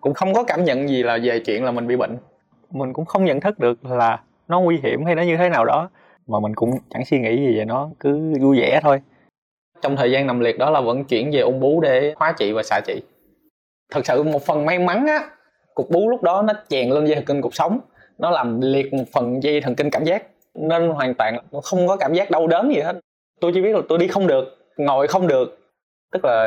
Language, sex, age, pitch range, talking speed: Vietnamese, male, 20-39, 120-165 Hz, 255 wpm